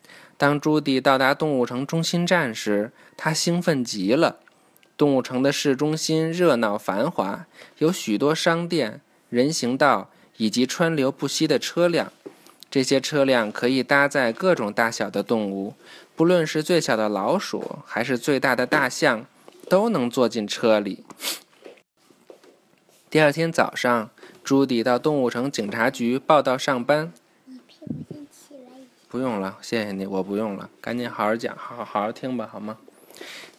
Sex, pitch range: male, 115-155 Hz